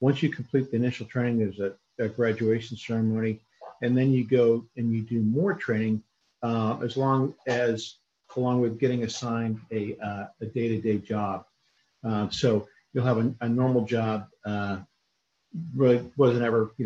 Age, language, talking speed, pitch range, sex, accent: 50-69, English, 165 wpm, 110-120 Hz, male, American